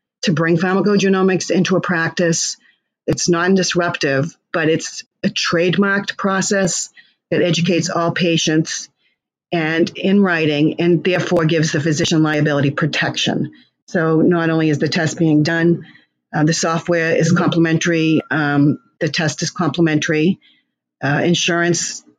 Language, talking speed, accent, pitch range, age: English, 125 wpm, American, 155-180 Hz, 50-69